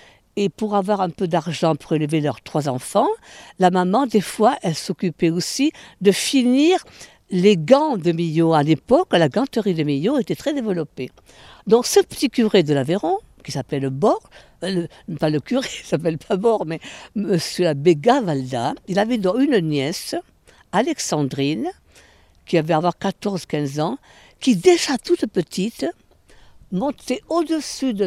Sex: female